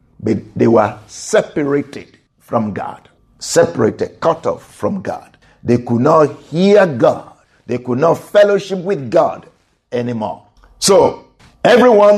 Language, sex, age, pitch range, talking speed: English, male, 50-69, 135-195 Hz, 125 wpm